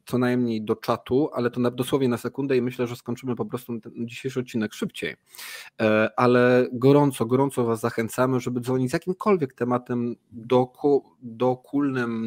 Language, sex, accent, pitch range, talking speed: Polish, male, native, 115-130 Hz, 150 wpm